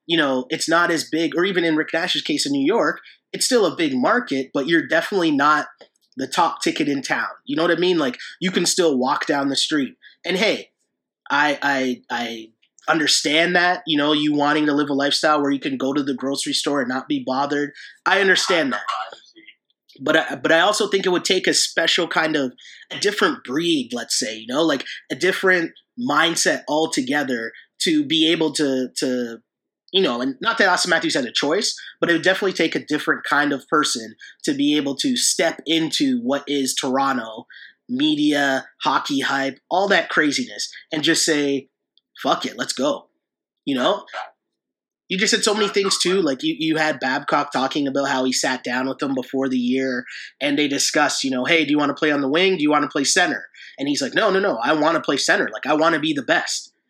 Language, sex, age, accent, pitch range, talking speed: English, male, 20-39, American, 140-195 Hz, 220 wpm